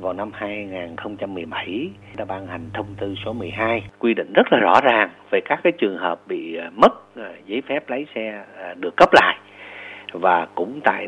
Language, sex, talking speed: Vietnamese, male, 185 wpm